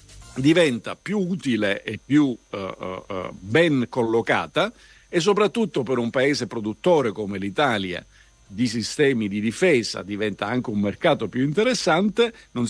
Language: Italian